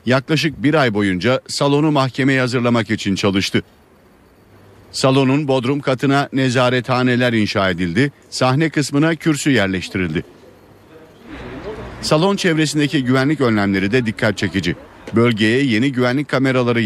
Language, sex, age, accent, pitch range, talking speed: Turkish, male, 50-69, native, 110-135 Hz, 105 wpm